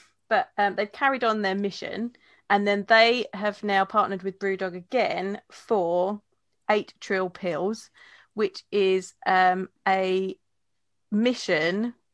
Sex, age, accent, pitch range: female, 30-49, British, 185-245 Hz